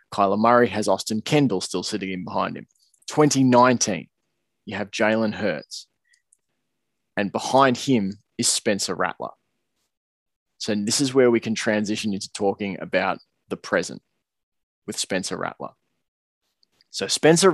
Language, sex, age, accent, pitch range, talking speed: English, male, 20-39, Australian, 105-125 Hz, 130 wpm